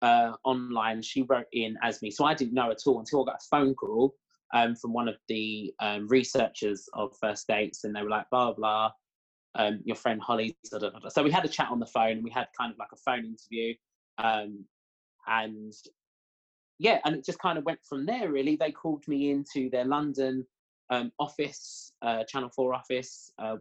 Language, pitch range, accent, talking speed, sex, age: English, 115-145 Hz, British, 205 wpm, male, 20-39